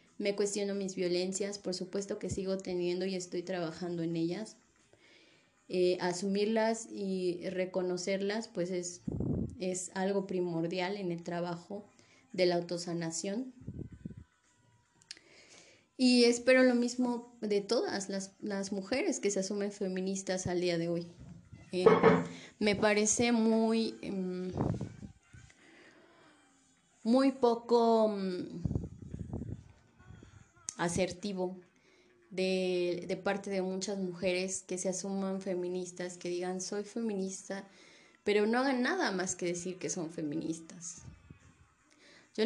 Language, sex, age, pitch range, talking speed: Spanish, female, 20-39, 180-220 Hz, 110 wpm